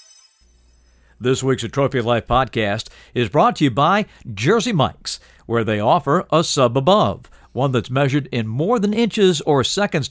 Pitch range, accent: 110-155 Hz, American